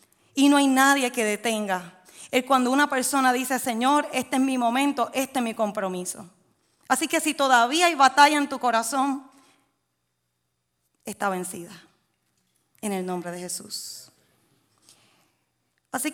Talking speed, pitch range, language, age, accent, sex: 140 wpm, 210-275 Hz, Spanish, 20-39, American, female